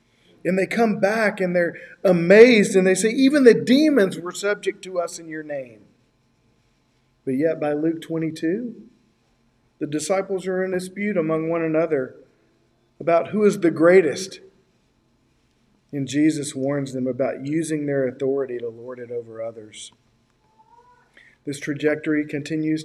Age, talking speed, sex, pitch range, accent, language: 50-69, 140 wpm, male, 125-185 Hz, American, English